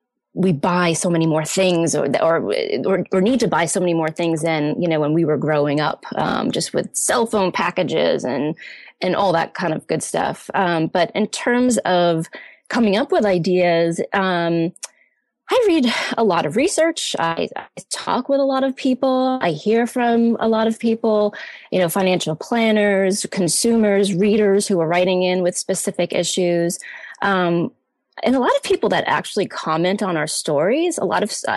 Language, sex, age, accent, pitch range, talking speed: English, female, 20-39, American, 170-220 Hz, 185 wpm